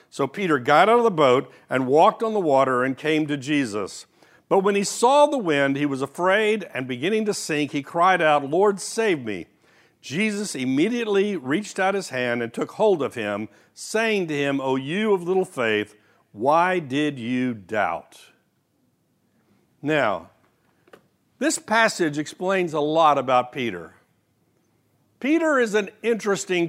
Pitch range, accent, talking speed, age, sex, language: 145-240 Hz, American, 155 wpm, 60-79, male, English